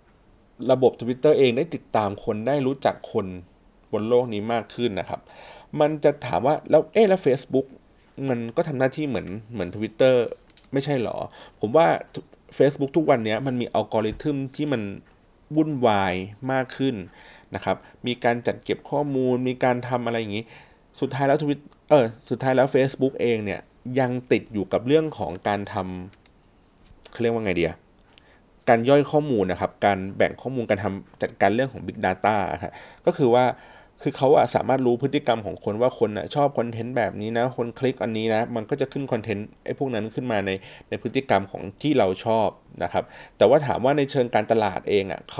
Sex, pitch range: male, 105-135 Hz